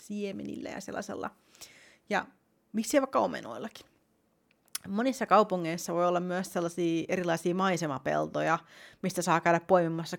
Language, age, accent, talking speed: Finnish, 30-49, native, 110 wpm